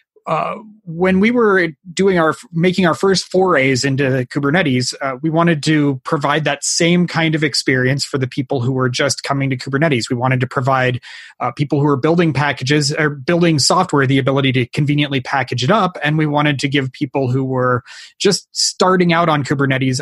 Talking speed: 190 wpm